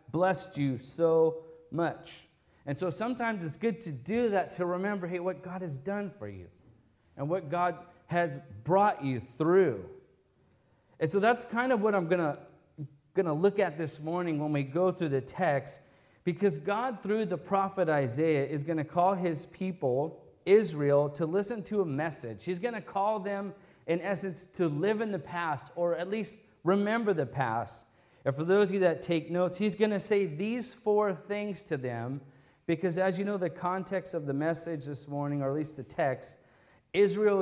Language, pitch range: English, 150-195 Hz